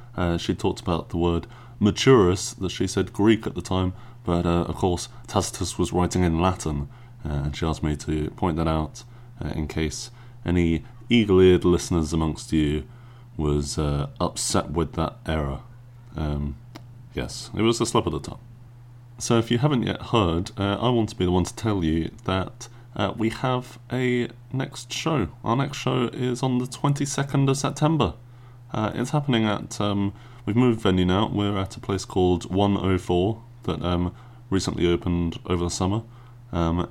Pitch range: 85-120 Hz